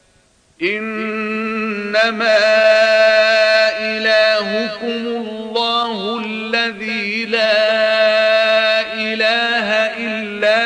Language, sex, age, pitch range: Arabic, male, 50-69, 215-220 Hz